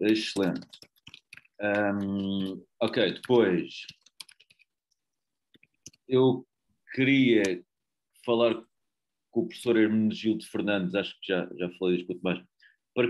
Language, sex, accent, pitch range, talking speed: Portuguese, male, Portuguese, 90-115 Hz, 95 wpm